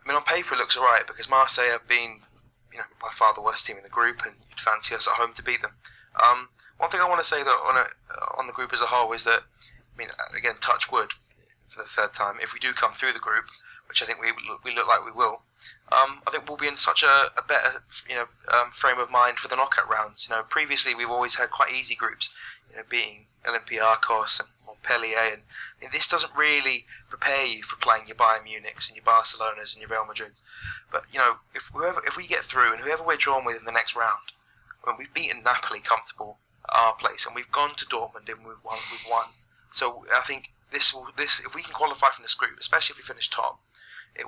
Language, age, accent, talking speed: English, 20-39, British, 250 wpm